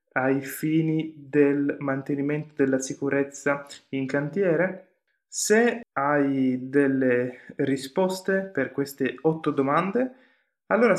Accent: native